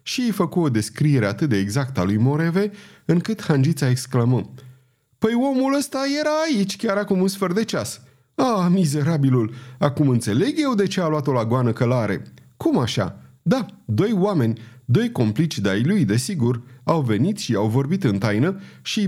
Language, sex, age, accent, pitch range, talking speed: Romanian, male, 30-49, native, 120-165 Hz, 185 wpm